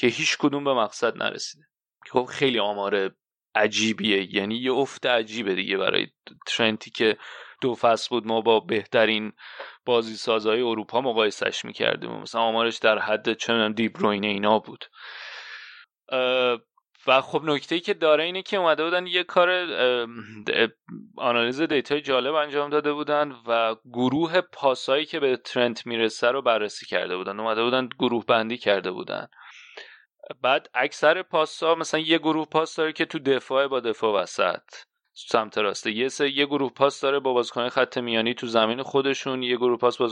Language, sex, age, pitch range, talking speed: Persian, male, 30-49, 115-150 Hz, 155 wpm